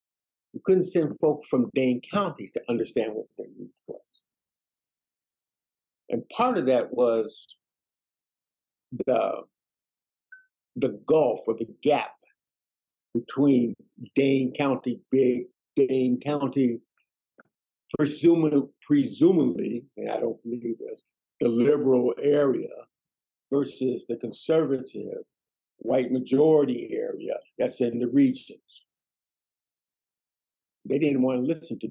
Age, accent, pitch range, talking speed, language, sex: 50-69, American, 125-165 Hz, 105 wpm, English, male